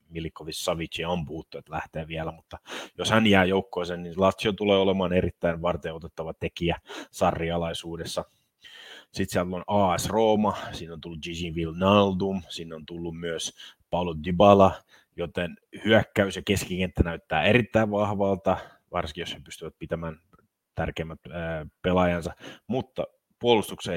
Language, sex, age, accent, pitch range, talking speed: Finnish, male, 30-49, native, 85-95 Hz, 130 wpm